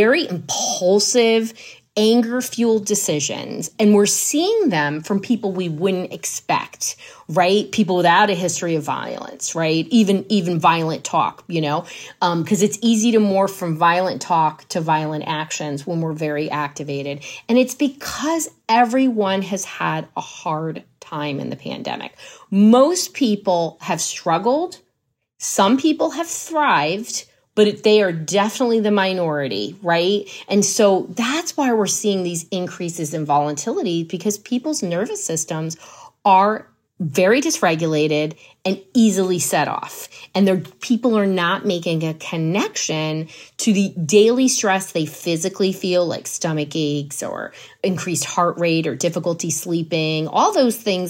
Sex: female